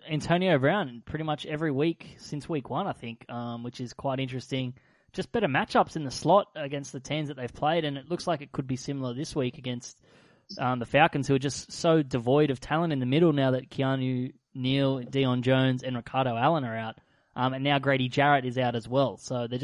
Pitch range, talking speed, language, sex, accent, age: 125-145 Hz, 225 wpm, English, male, Australian, 20-39